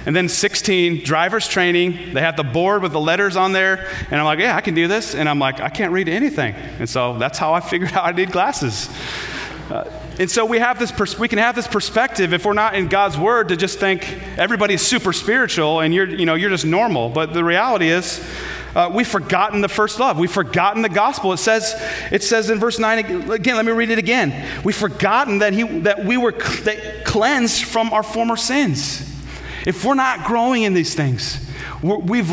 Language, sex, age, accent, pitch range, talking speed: English, male, 30-49, American, 160-215 Hz, 220 wpm